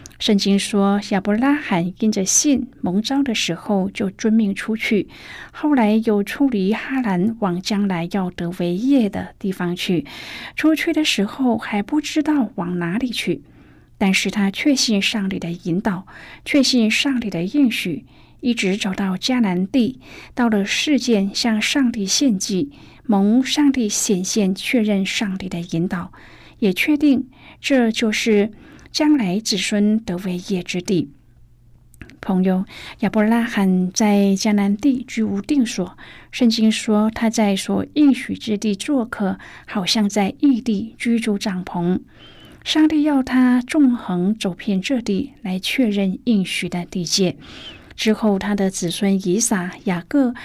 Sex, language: female, Chinese